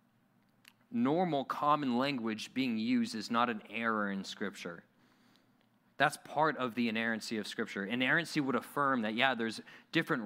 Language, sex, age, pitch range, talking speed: English, male, 20-39, 120-165 Hz, 145 wpm